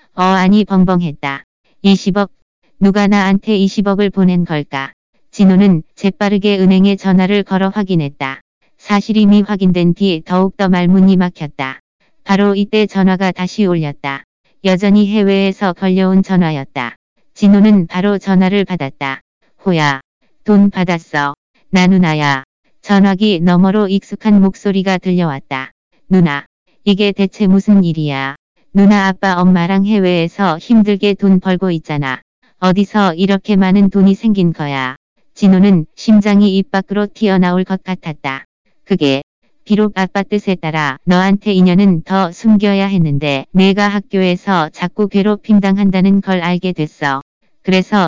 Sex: female